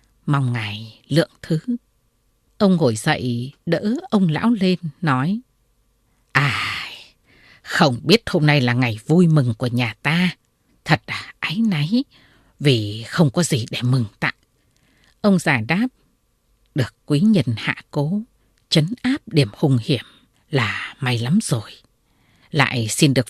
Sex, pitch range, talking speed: female, 120-200 Hz, 140 wpm